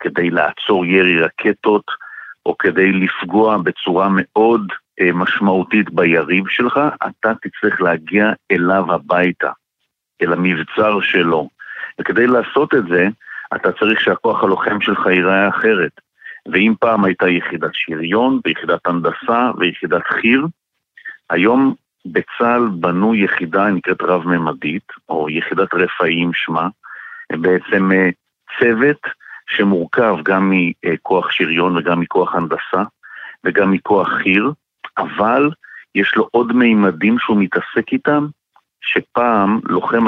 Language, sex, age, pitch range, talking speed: Hebrew, male, 60-79, 90-110 Hz, 110 wpm